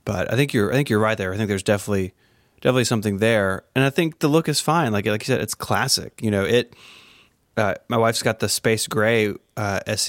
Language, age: English, 20-39